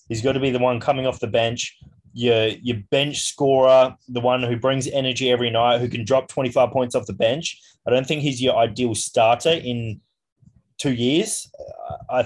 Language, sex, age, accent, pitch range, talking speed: English, male, 20-39, Australian, 115-135 Hz, 200 wpm